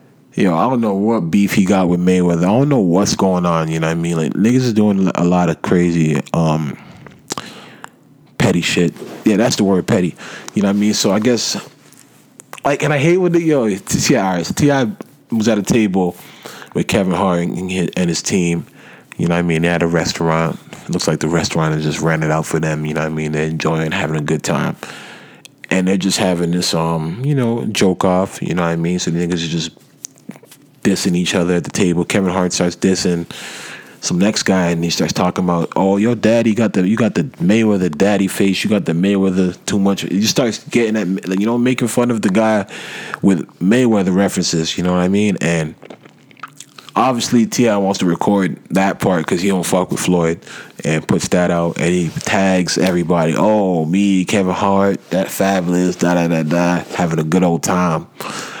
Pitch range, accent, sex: 85-100 Hz, American, male